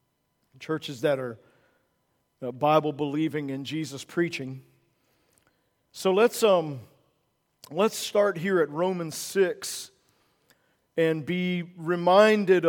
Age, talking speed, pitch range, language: 50-69, 85 wpm, 160-190 Hz, English